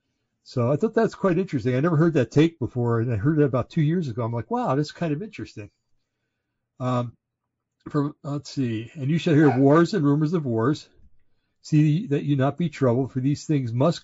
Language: English